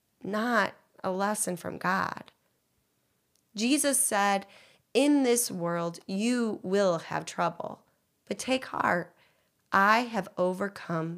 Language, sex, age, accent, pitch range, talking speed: English, female, 30-49, American, 190-230 Hz, 105 wpm